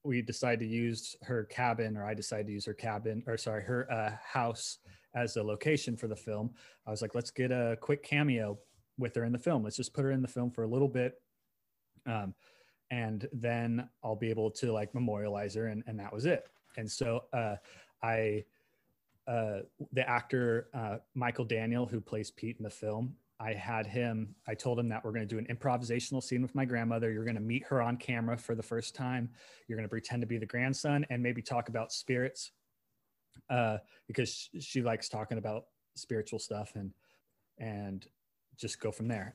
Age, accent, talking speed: 30-49, American, 205 wpm